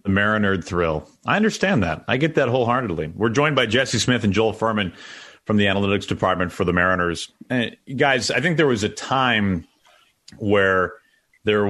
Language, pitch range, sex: English, 90-110 Hz, male